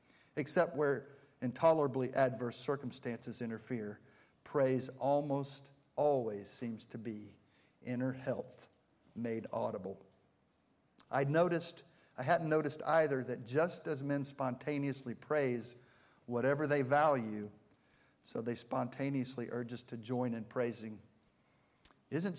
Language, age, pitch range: English, 50-69, 120-150 Hz